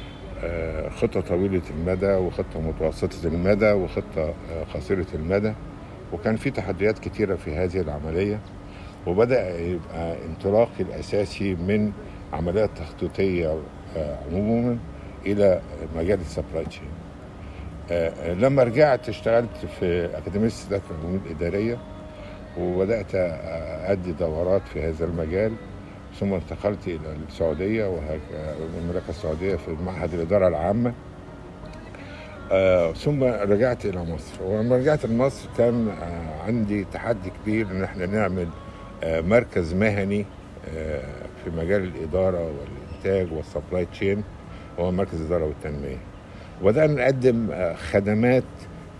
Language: Arabic